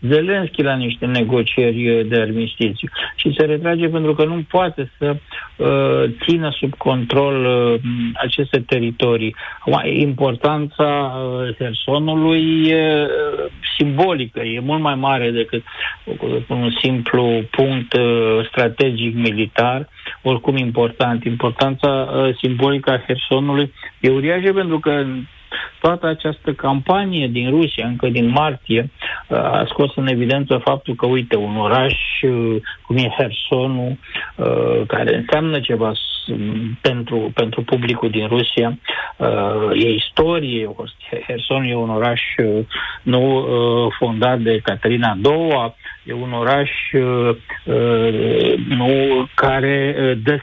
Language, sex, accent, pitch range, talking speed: Romanian, male, native, 115-140 Hz, 100 wpm